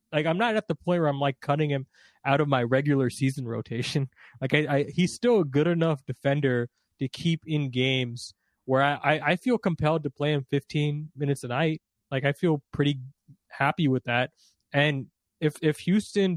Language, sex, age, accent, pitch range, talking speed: English, male, 20-39, American, 130-155 Hz, 195 wpm